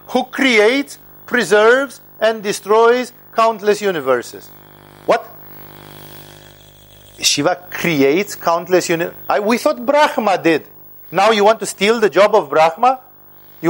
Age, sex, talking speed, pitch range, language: 50-69, male, 115 wpm, 170-225 Hz, English